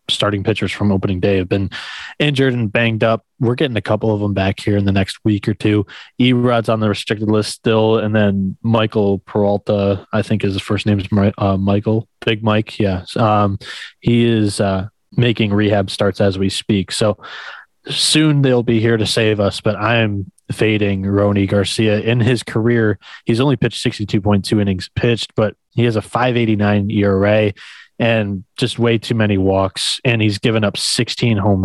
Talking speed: 180 wpm